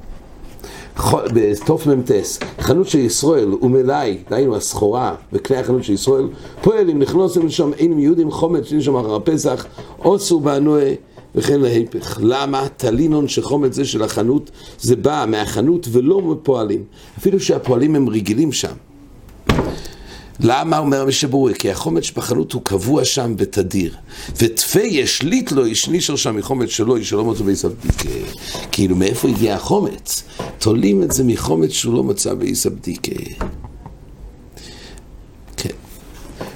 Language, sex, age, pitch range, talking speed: English, male, 50-69, 105-145 Hz, 120 wpm